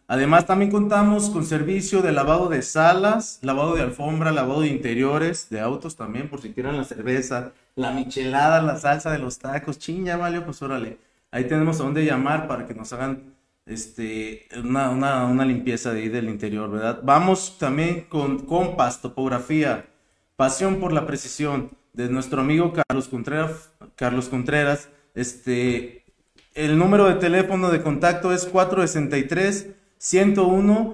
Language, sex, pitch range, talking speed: Spanish, male, 130-170 Hz, 155 wpm